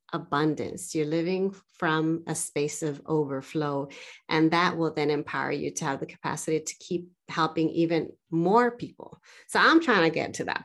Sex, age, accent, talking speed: female, 30-49, American, 175 wpm